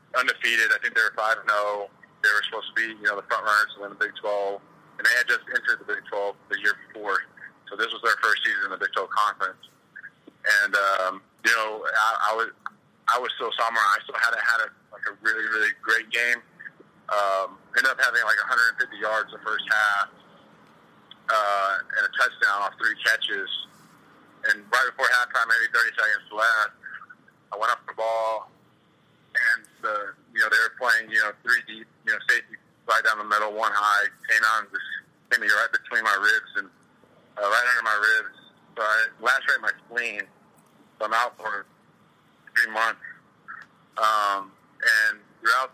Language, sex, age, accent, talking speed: English, male, 40-59, American, 195 wpm